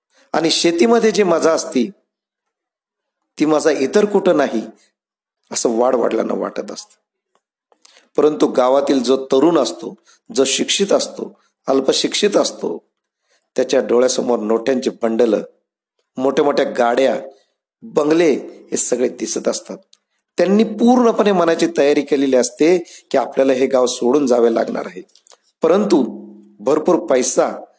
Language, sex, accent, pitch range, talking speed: Marathi, male, native, 125-180 Hz, 85 wpm